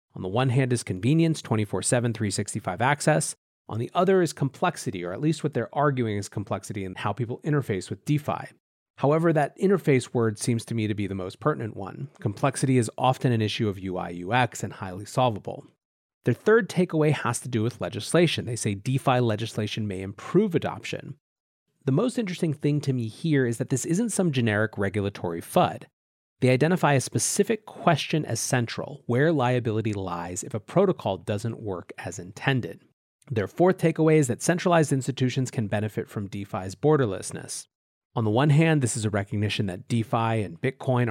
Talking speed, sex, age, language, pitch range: 180 wpm, male, 30-49, English, 105-140 Hz